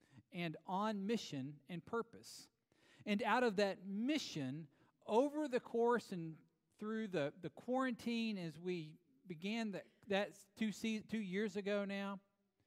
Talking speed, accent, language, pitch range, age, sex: 130 wpm, American, English, 170-230 Hz, 40-59, male